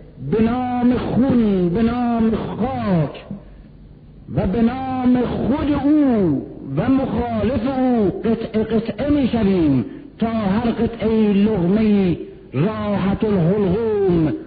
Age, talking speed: 60-79, 105 wpm